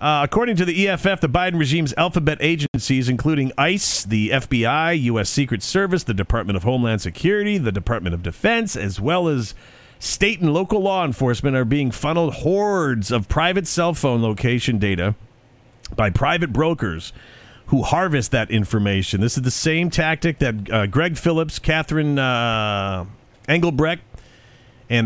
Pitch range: 115-150 Hz